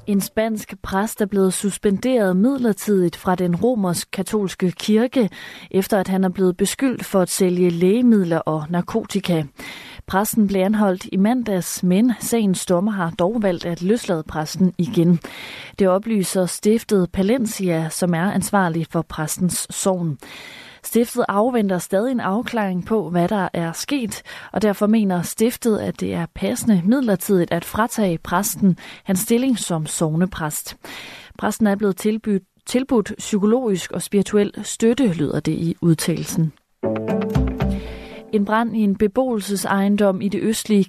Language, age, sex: Danish, 30-49, female